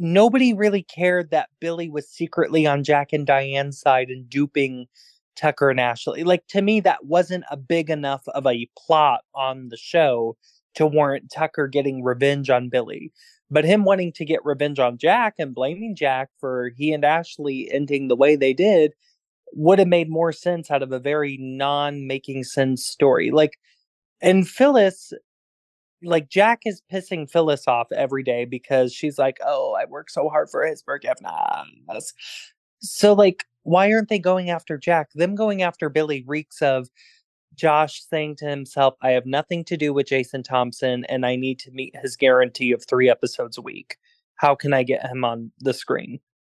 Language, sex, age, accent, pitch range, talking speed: English, male, 20-39, American, 130-175 Hz, 175 wpm